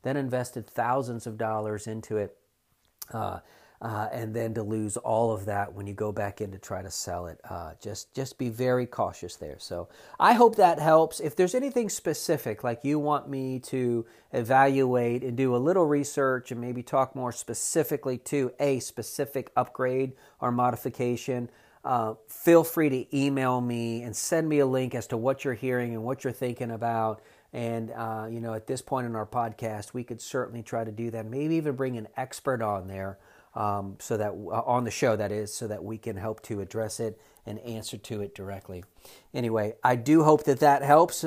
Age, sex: 40-59, male